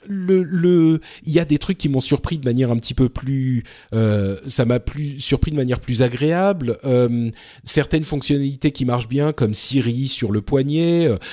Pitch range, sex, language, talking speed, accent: 120-155 Hz, male, French, 190 wpm, French